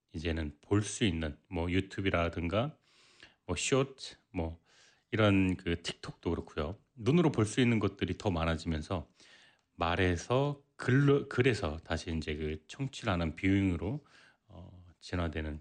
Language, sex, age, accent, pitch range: Korean, male, 30-49, native, 85-130 Hz